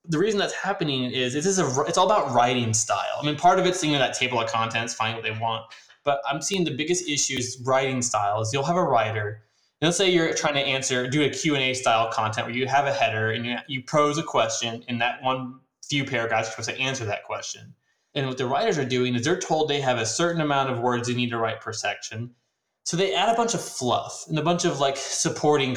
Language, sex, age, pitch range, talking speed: English, male, 20-39, 115-150 Hz, 255 wpm